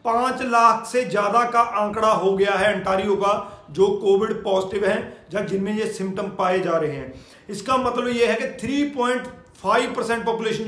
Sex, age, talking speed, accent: male, 40-59, 130 wpm, native